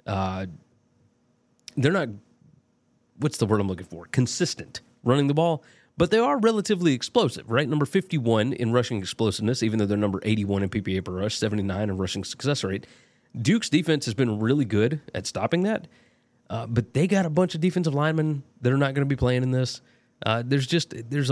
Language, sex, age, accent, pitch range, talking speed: English, male, 30-49, American, 110-145 Hz, 195 wpm